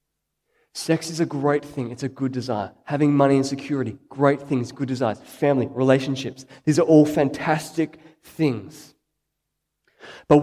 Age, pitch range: 20-39, 145-180 Hz